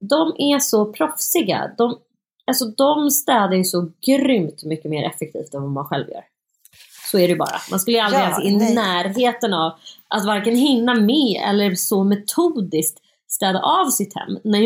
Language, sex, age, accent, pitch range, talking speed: Swedish, female, 30-49, native, 180-230 Hz, 180 wpm